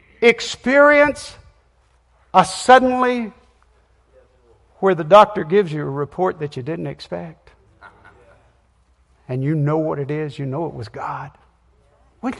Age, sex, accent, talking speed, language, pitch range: 60-79, male, American, 125 wpm, English, 165-265 Hz